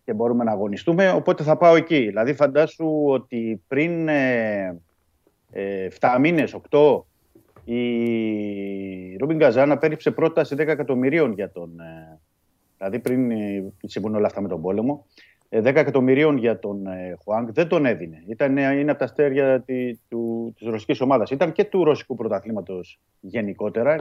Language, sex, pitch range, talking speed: Greek, male, 100-145 Hz, 160 wpm